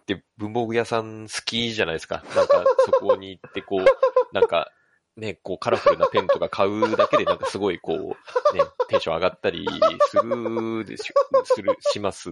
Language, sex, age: Japanese, male, 20-39